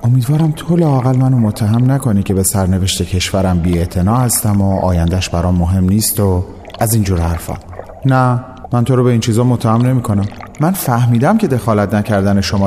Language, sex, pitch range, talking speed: Persian, male, 95-125 Hz, 180 wpm